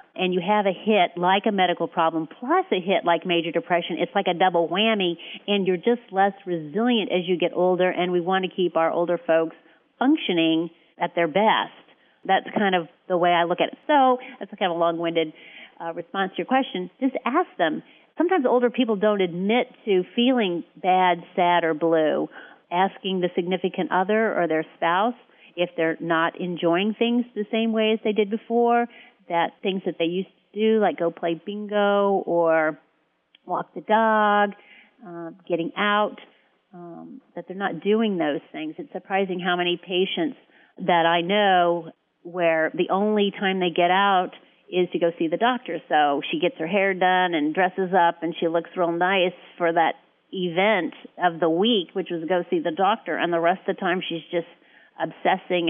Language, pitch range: English, 170-205 Hz